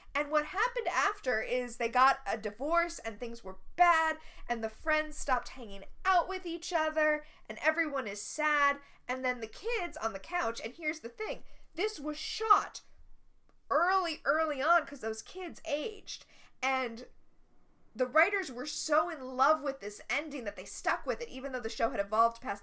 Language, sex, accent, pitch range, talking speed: English, female, American, 245-340 Hz, 185 wpm